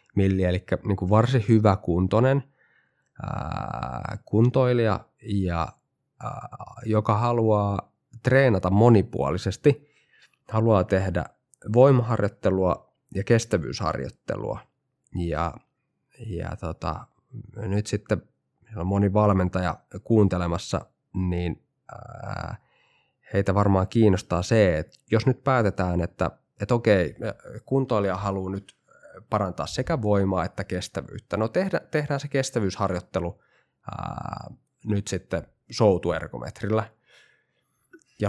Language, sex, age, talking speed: Finnish, male, 20-39, 85 wpm